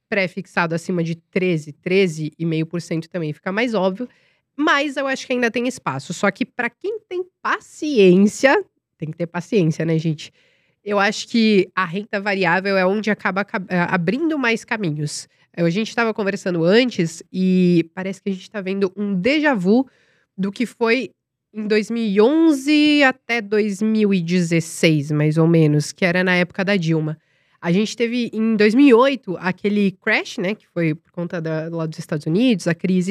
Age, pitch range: 20-39, 175-235 Hz